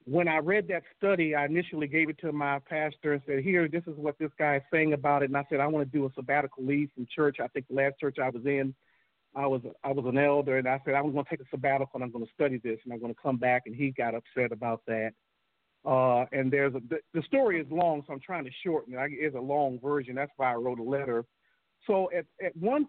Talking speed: 285 wpm